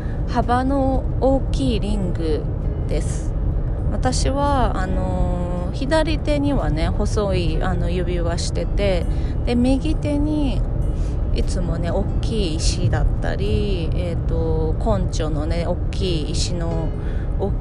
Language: Japanese